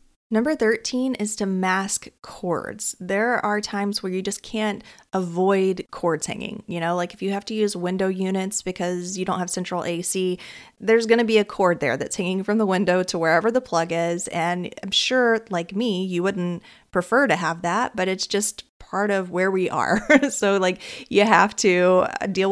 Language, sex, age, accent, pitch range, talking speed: English, female, 30-49, American, 175-210 Hz, 200 wpm